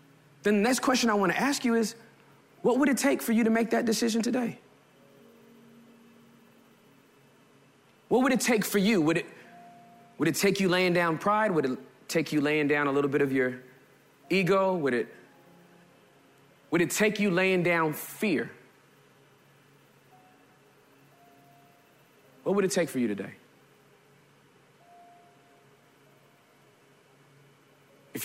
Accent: American